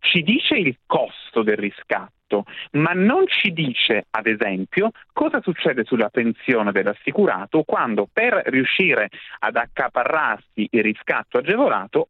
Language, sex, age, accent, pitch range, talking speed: Italian, male, 30-49, native, 115-180 Hz, 125 wpm